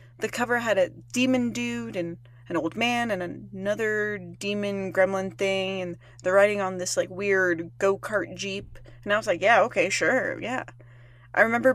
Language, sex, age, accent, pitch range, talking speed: English, female, 20-39, American, 140-225 Hz, 175 wpm